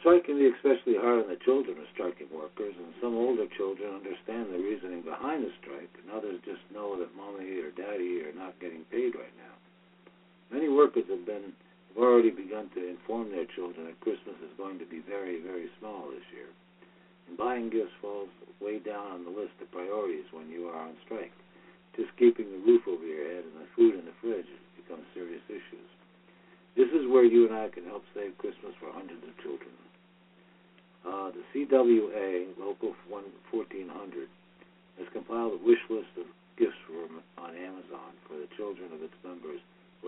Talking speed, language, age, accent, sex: 185 wpm, English, 60-79, American, male